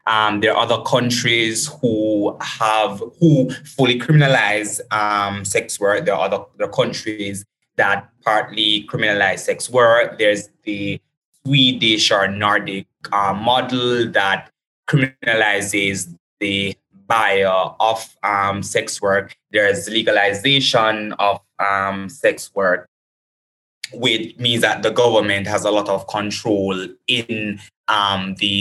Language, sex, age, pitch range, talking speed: English, male, 20-39, 100-120 Hz, 120 wpm